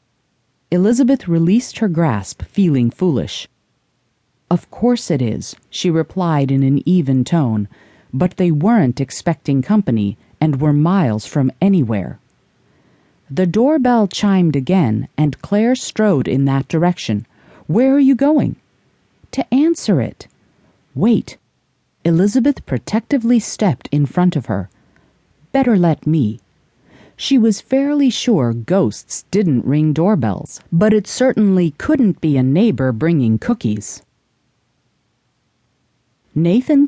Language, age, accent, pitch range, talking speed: English, 40-59, American, 130-215 Hz, 115 wpm